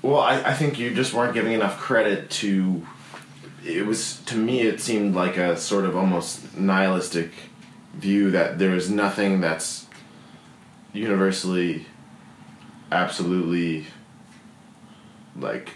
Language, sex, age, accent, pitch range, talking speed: English, male, 20-39, American, 85-100 Hz, 120 wpm